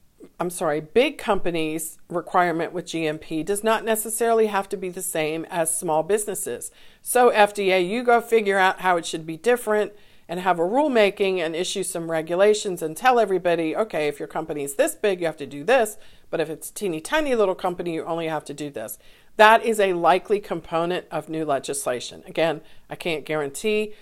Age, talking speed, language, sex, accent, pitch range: 50-69, 190 wpm, English, female, American, 165-210 Hz